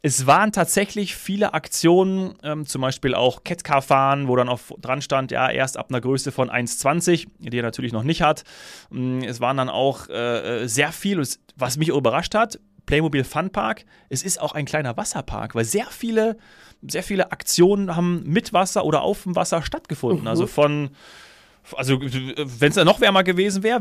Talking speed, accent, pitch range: 175 wpm, German, 135-180 Hz